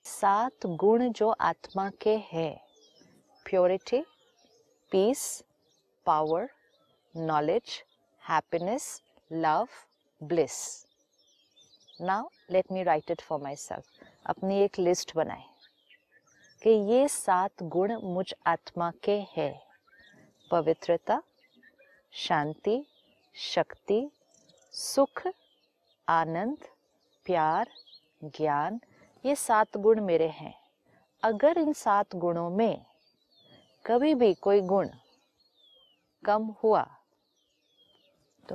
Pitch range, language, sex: 180-240 Hz, Hindi, female